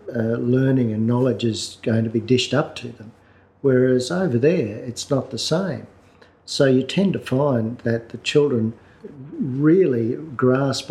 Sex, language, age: male, English, 50-69